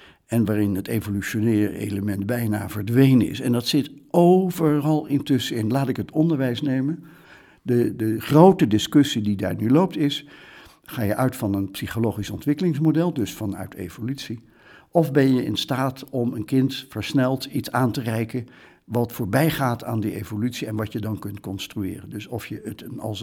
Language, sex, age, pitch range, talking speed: Dutch, male, 60-79, 105-145 Hz, 175 wpm